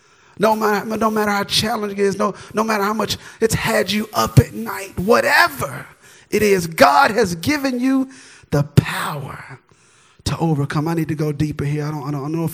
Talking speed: 210 wpm